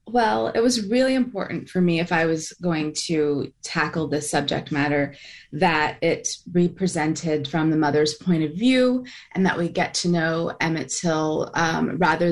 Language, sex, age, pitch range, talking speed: English, female, 20-39, 150-180 Hz, 170 wpm